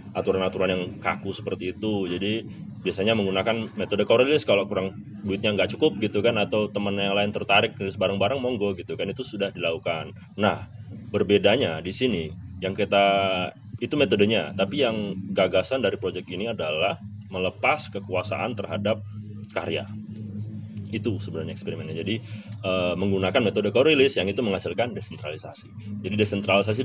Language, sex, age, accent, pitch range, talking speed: Indonesian, male, 30-49, native, 100-110 Hz, 140 wpm